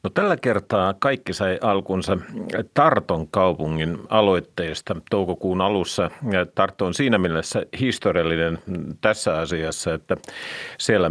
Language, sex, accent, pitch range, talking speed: Finnish, male, native, 85-105 Hz, 105 wpm